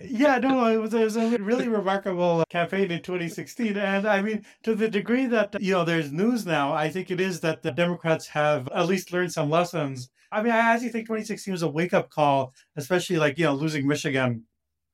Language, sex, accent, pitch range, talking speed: English, male, American, 145-195 Hz, 215 wpm